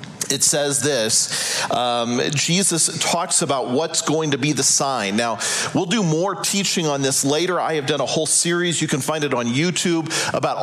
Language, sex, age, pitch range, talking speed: English, male, 40-59, 140-175 Hz, 190 wpm